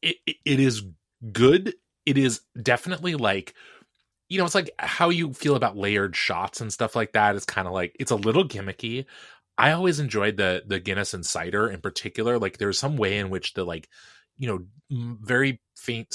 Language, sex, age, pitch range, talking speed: English, male, 20-39, 95-125 Hz, 195 wpm